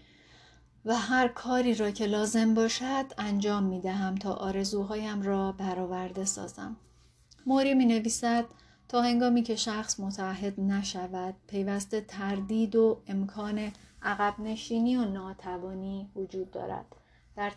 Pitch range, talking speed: 190-220 Hz, 120 wpm